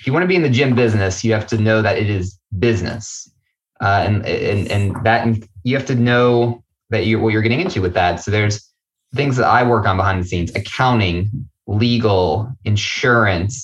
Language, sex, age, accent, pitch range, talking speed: English, male, 20-39, American, 100-115 Hz, 205 wpm